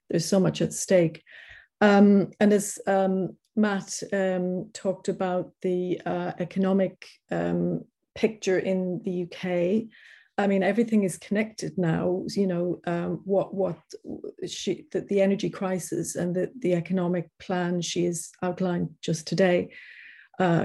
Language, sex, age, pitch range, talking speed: English, female, 40-59, 175-195 Hz, 140 wpm